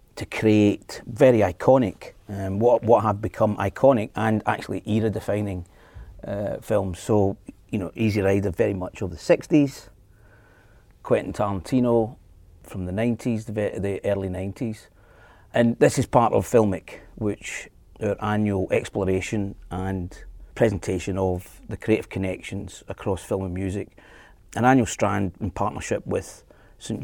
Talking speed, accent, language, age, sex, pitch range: 135 wpm, British, English, 40-59, male, 95-110 Hz